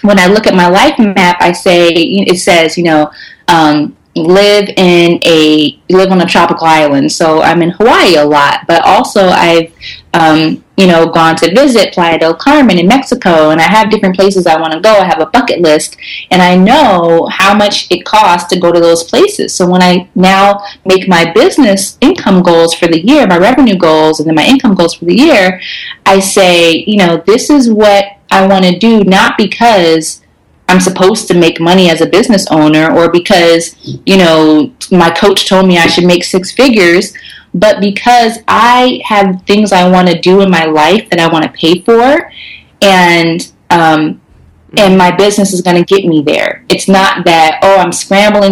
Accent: American